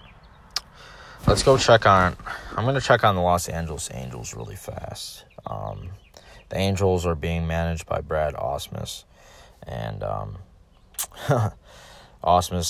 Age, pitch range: 20-39, 85-105 Hz